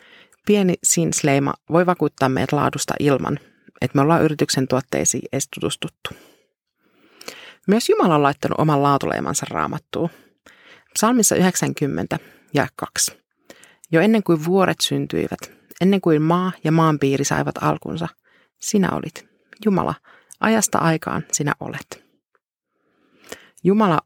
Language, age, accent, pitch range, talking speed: Finnish, 30-49, native, 145-185 Hz, 110 wpm